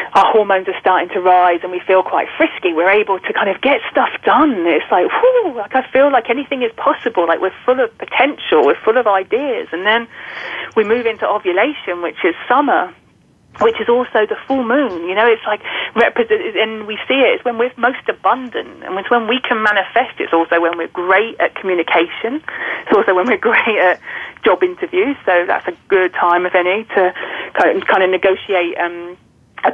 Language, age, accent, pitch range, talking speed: English, 30-49, British, 185-285 Hz, 200 wpm